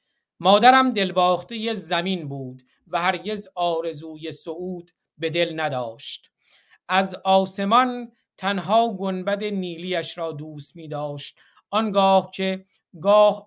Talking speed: 110 wpm